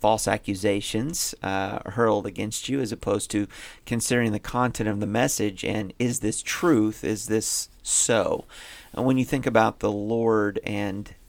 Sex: male